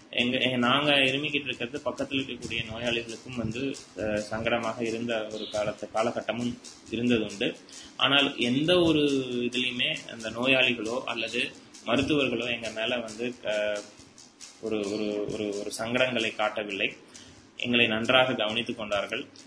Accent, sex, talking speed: native, male, 110 wpm